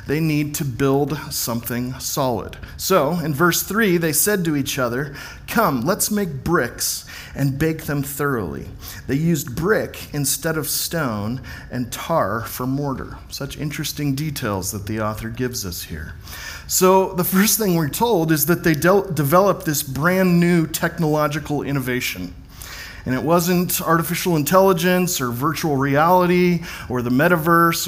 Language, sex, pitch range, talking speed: English, male, 130-175 Hz, 145 wpm